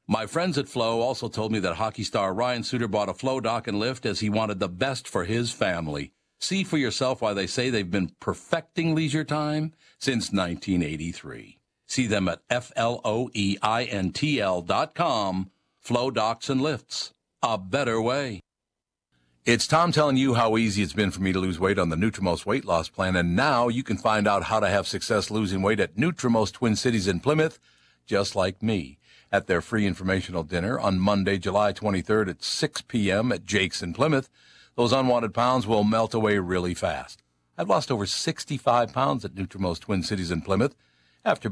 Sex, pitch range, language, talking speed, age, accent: male, 95-120 Hz, English, 185 wpm, 60-79, American